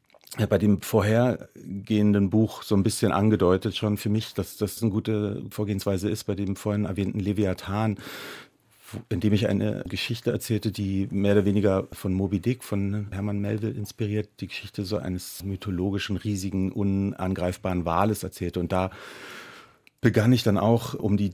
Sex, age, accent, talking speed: male, 40-59, German, 155 wpm